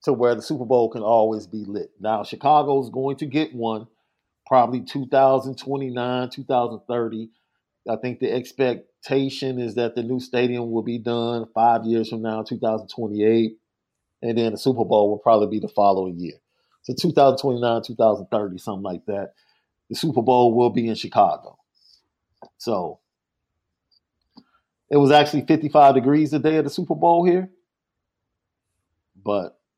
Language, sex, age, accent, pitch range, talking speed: English, male, 40-59, American, 115-145 Hz, 145 wpm